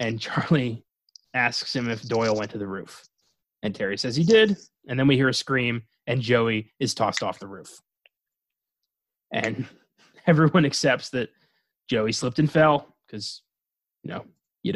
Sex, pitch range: male, 110-140 Hz